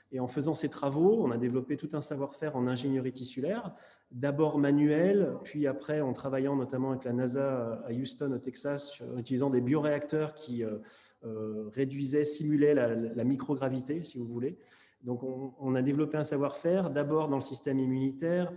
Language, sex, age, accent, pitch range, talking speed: French, male, 30-49, French, 125-150 Hz, 165 wpm